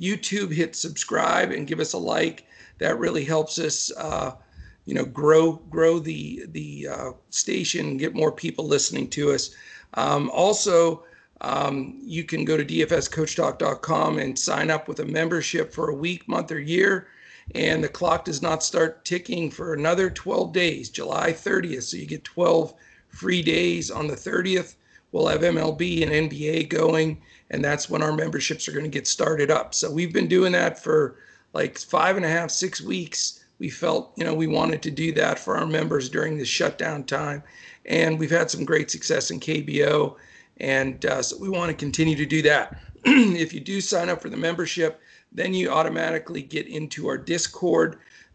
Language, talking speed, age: English, 185 wpm, 50-69